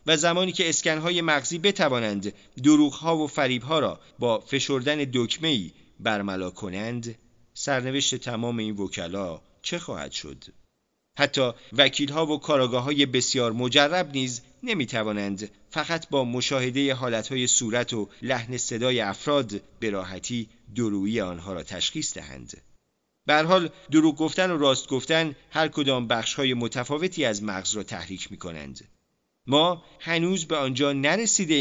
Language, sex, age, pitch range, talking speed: Persian, male, 40-59, 105-145 Hz, 125 wpm